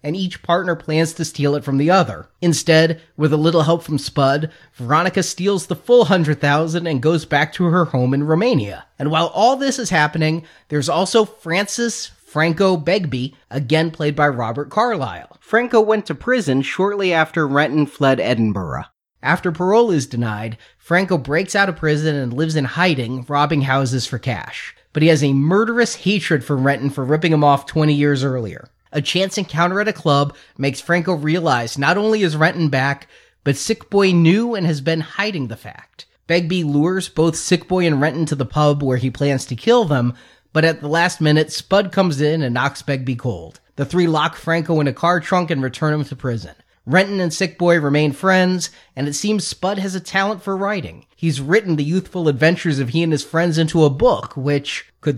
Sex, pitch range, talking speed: male, 140-180 Hz, 200 wpm